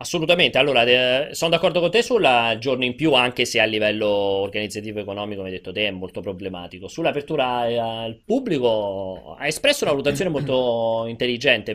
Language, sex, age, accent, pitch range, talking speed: Italian, male, 30-49, native, 115-150 Hz, 165 wpm